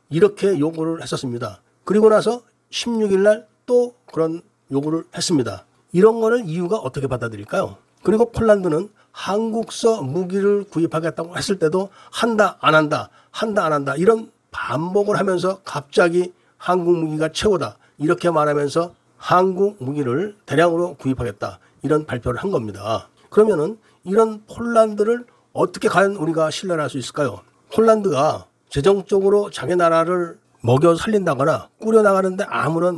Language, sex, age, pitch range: Korean, male, 40-59, 145-210 Hz